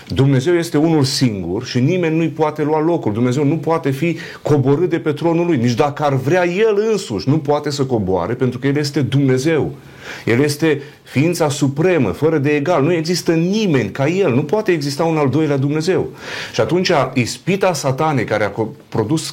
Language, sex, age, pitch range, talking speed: Romanian, male, 40-59, 125-160 Hz, 195 wpm